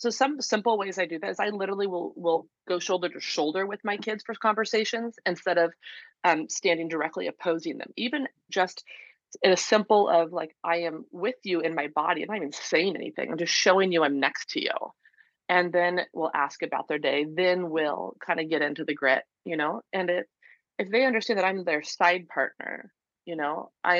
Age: 30-49